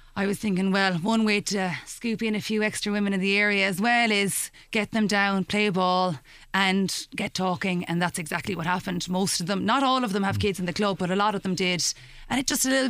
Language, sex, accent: English, female, Irish